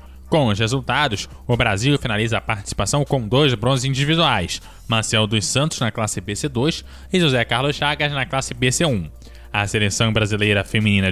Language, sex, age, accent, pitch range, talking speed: Portuguese, male, 20-39, Brazilian, 110-145 Hz, 155 wpm